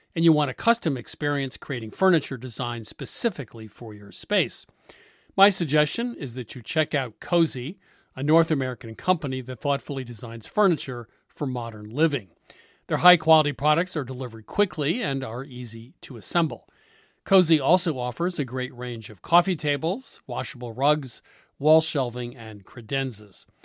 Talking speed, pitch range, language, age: 145 wpm, 125-165 Hz, English, 50-69